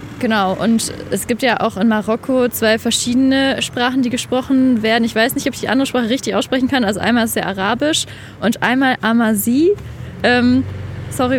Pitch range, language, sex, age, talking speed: 220-255 Hz, German, female, 20-39, 180 wpm